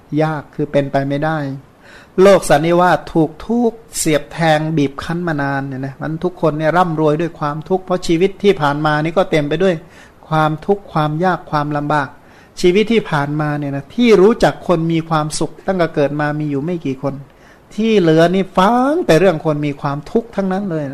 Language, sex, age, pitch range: Thai, male, 60-79, 150-195 Hz